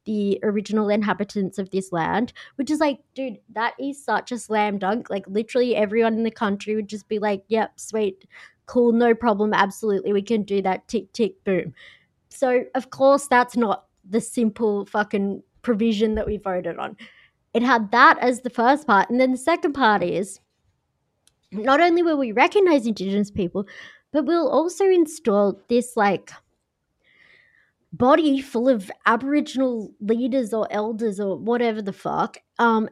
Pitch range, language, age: 210-265 Hz, English, 20-39